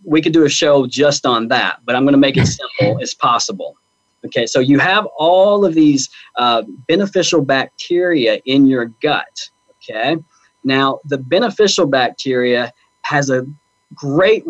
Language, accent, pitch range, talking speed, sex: English, American, 120-160 Hz, 155 wpm, male